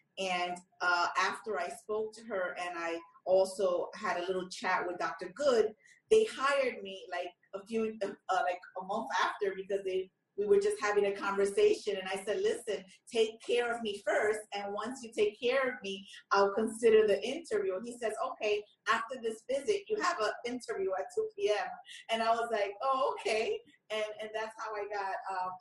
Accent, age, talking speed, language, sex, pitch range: American, 30-49, 195 wpm, English, female, 180-225 Hz